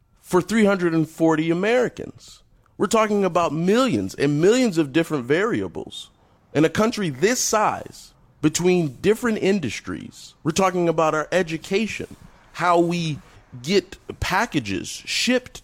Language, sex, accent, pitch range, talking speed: English, male, American, 155-220 Hz, 115 wpm